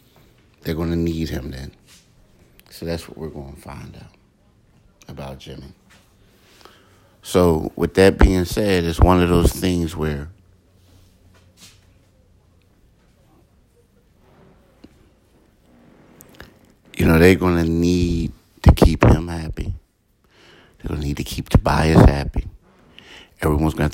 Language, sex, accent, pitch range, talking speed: English, male, American, 75-90 Hz, 120 wpm